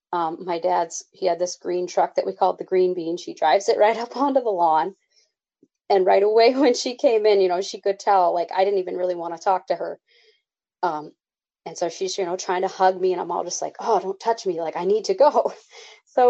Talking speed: 255 wpm